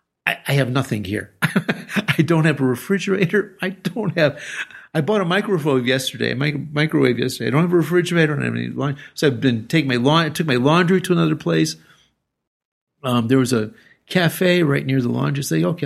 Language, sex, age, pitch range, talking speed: English, male, 50-69, 125-170 Hz, 215 wpm